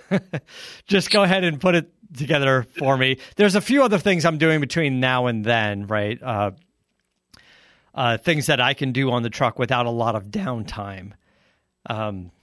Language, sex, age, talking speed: English, male, 40-59, 180 wpm